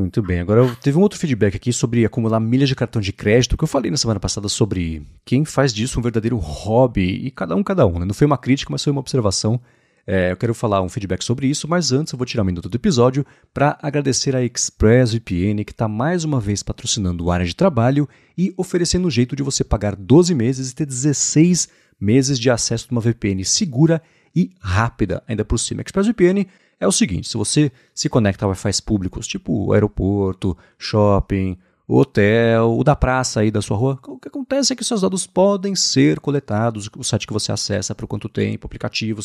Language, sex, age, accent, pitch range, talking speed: Portuguese, male, 30-49, Brazilian, 105-145 Hz, 210 wpm